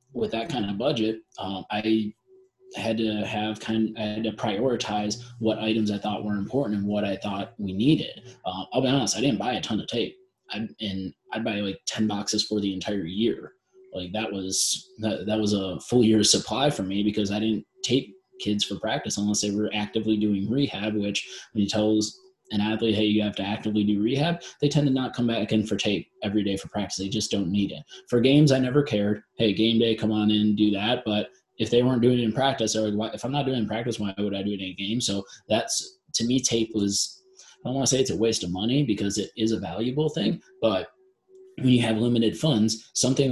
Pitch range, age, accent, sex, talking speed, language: 105-125 Hz, 20-39, American, male, 240 wpm, English